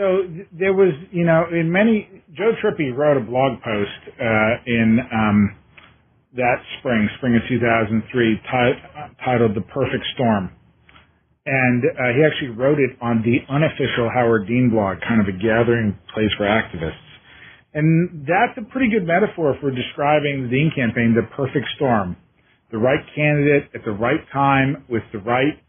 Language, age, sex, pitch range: English, 40-59, male, 120-150 Hz